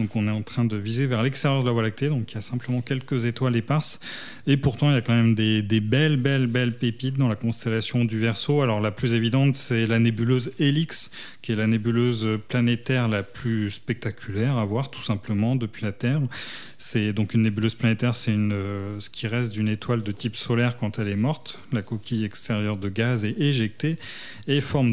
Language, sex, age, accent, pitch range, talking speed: French, male, 30-49, French, 115-140 Hz, 215 wpm